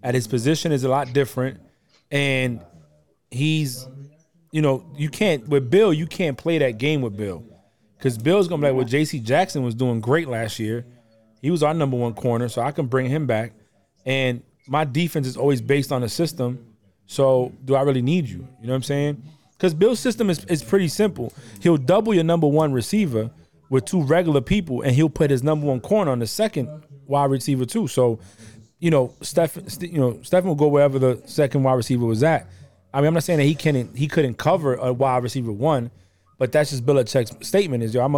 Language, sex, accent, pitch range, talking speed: English, male, American, 120-155 Hz, 215 wpm